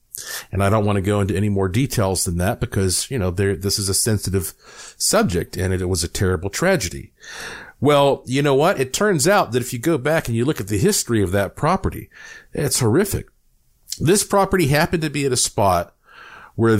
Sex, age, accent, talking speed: male, 50-69, American, 215 wpm